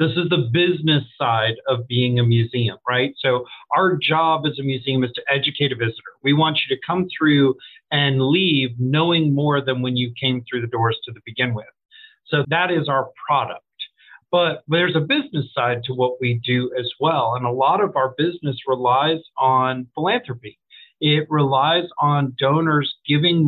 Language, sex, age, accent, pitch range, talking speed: English, male, 40-59, American, 130-160 Hz, 180 wpm